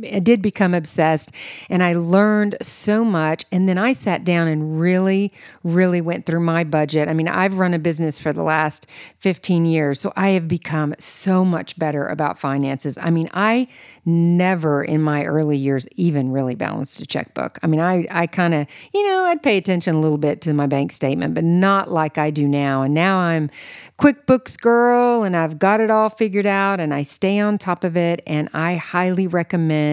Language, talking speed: English, 200 wpm